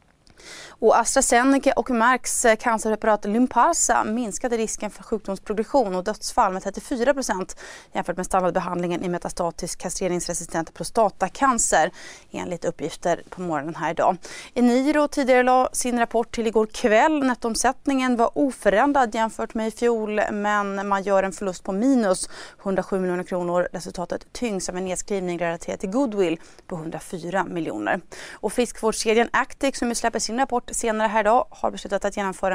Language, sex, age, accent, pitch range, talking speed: Swedish, female, 30-49, native, 180-235 Hz, 140 wpm